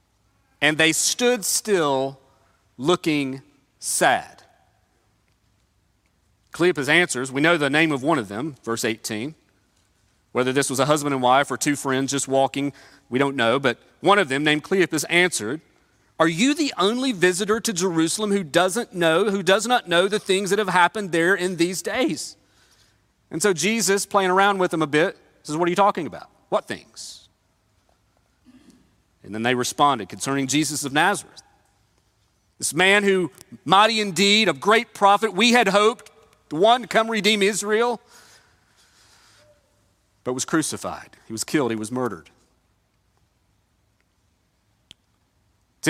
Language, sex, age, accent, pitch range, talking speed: English, male, 40-59, American, 125-195 Hz, 150 wpm